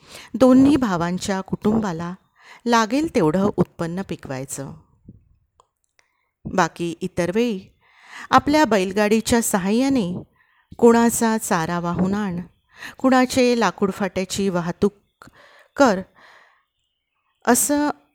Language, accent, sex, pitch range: Marathi, native, female, 180-240 Hz